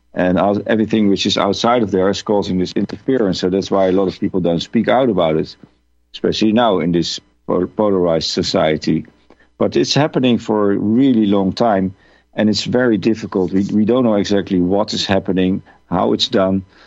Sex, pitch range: male, 90-105 Hz